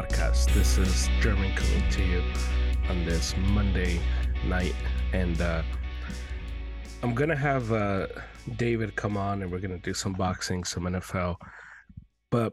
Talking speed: 140 wpm